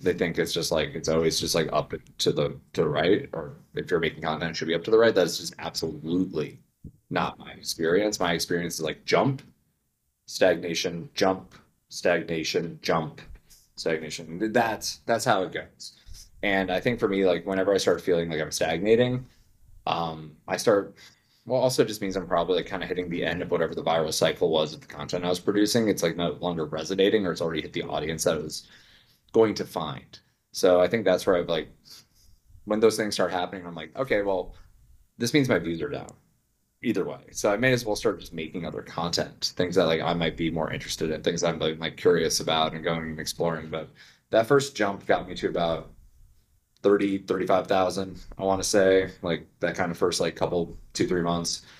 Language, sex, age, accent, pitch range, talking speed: English, male, 20-39, American, 80-100 Hz, 210 wpm